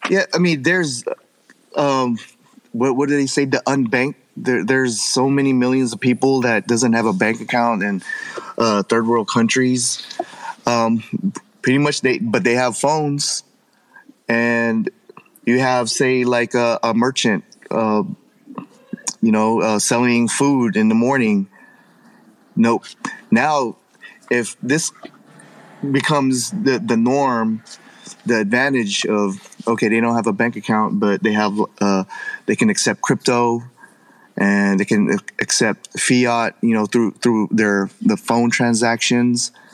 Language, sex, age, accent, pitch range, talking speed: English, male, 20-39, American, 115-150 Hz, 140 wpm